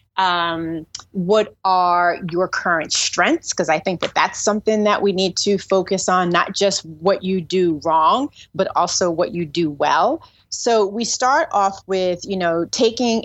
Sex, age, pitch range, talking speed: female, 30-49, 170-200 Hz, 170 wpm